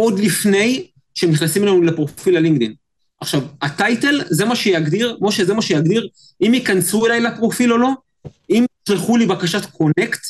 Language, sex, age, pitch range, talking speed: Hebrew, male, 30-49, 155-220 Hz, 155 wpm